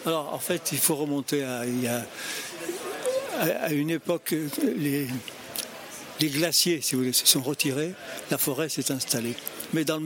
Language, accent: French, French